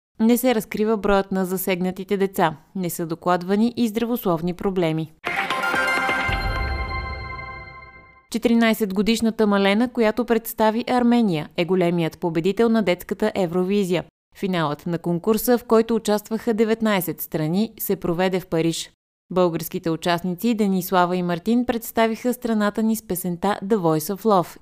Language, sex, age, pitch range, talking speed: Bulgarian, female, 20-39, 170-220 Hz, 120 wpm